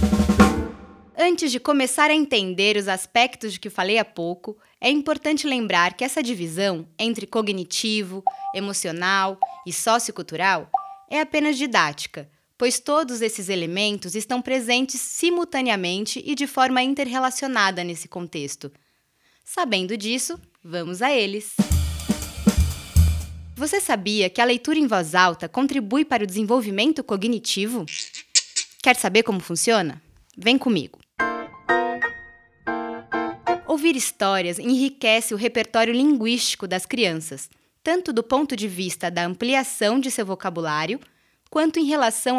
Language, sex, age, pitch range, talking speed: Portuguese, female, 20-39, 190-260 Hz, 115 wpm